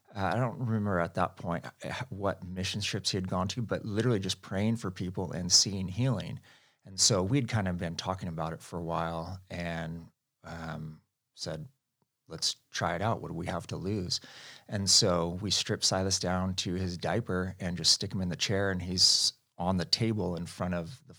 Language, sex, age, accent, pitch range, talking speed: English, male, 30-49, American, 90-110 Hz, 205 wpm